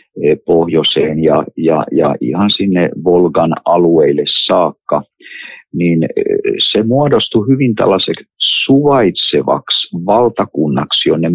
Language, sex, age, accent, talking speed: Finnish, male, 50-69, native, 85 wpm